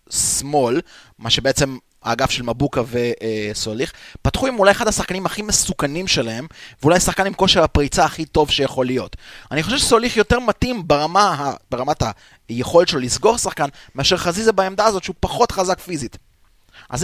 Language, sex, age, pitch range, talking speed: Hebrew, male, 20-39, 125-165 Hz, 160 wpm